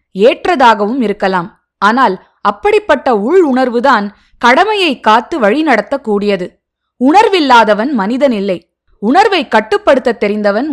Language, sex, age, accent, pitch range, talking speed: Tamil, female, 20-39, native, 210-300 Hz, 80 wpm